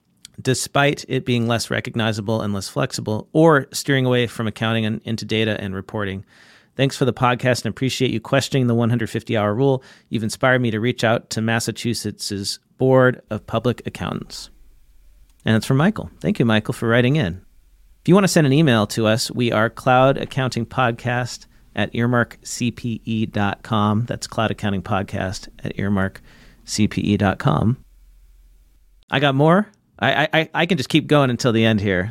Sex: male